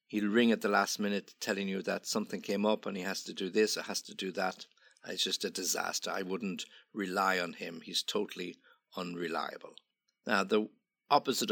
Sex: male